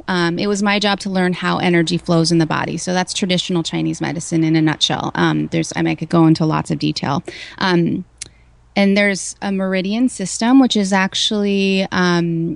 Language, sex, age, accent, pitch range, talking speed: English, female, 20-39, American, 160-190 Hz, 200 wpm